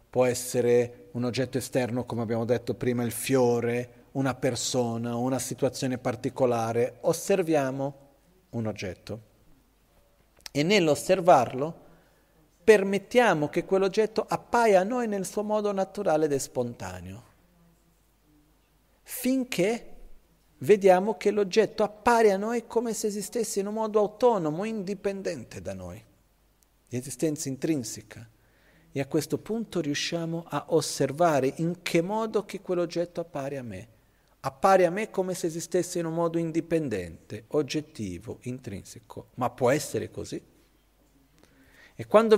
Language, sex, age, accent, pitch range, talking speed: Italian, male, 40-59, native, 120-185 Hz, 125 wpm